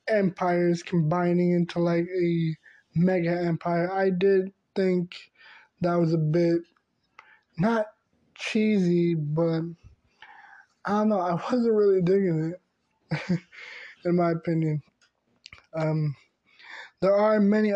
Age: 20-39